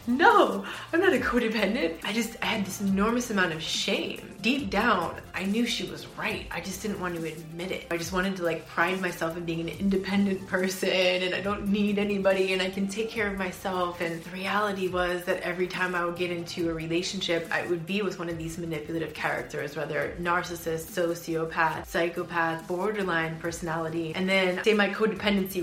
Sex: female